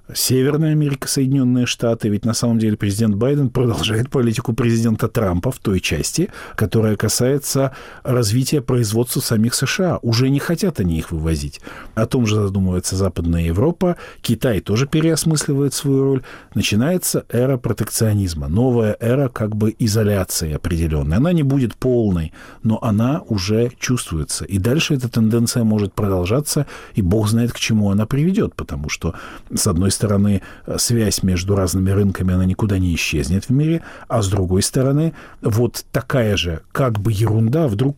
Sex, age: male, 50-69